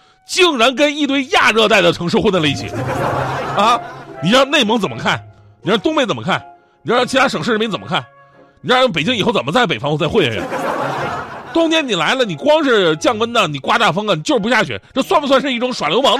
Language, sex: Chinese, male